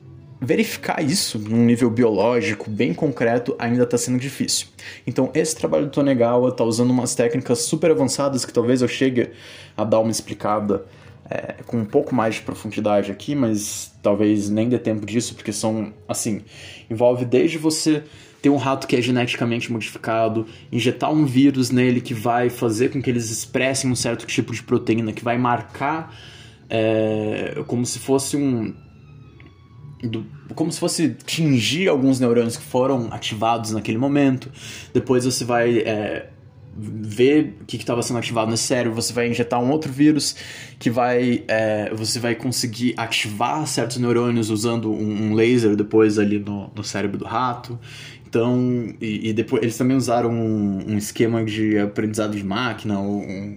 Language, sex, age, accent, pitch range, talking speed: Portuguese, male, 20-39, Brazilian, 110-130 Hz, 160 wpm